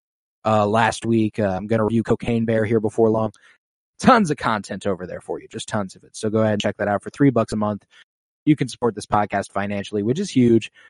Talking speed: 250 wpm